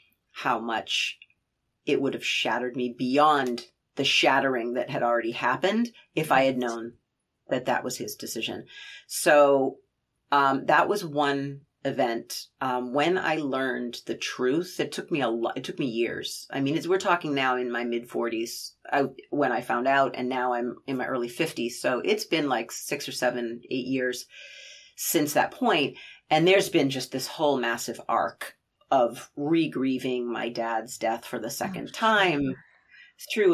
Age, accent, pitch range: 30-49, American, 120-145 Hz